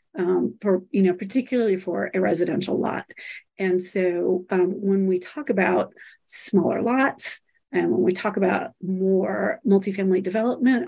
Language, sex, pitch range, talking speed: English, female, 190-235 Hz, 140 wpm